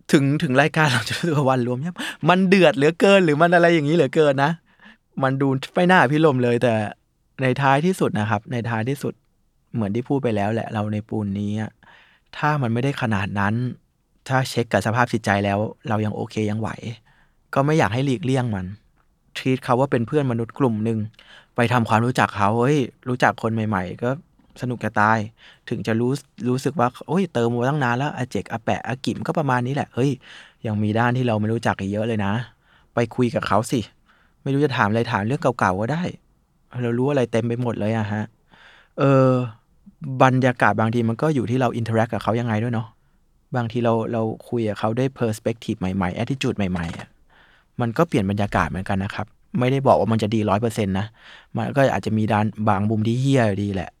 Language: English